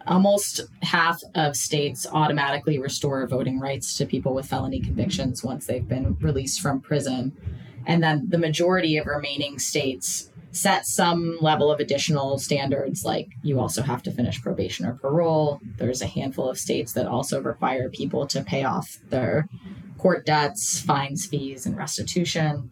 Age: 20-39